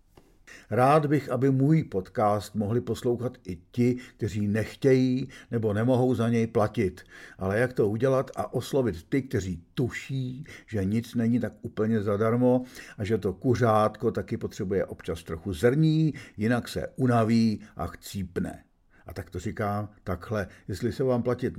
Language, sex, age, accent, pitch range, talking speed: Czech, male, 50-69, native, 105-130 Hz, 150 wpm